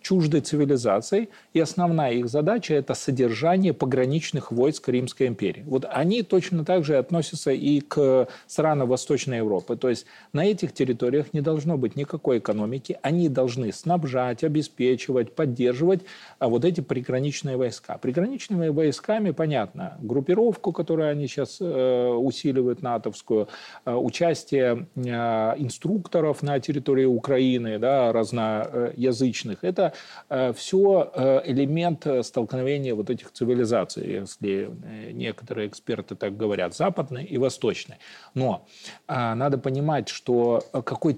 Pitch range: 125-165 Hz